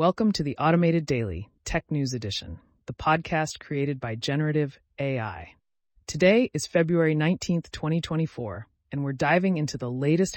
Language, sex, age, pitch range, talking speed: English, female, 30-49, 120-165 Hz, 145 wpm